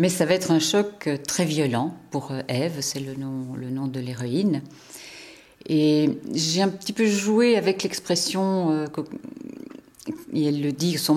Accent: French